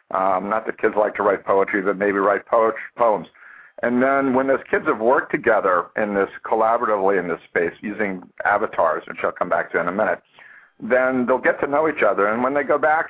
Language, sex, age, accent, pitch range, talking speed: English, male, 50-69, American, 105-130 Hz, 225 wpm